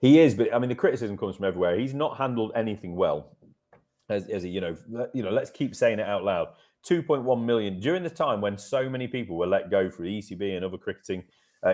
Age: 30-49